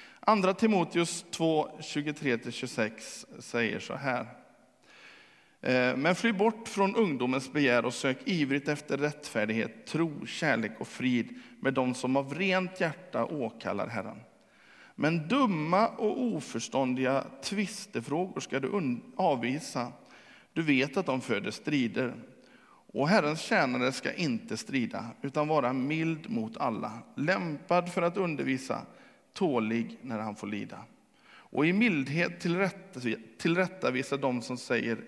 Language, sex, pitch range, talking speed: Swedish, male, 130-190 Hz, 120 wpm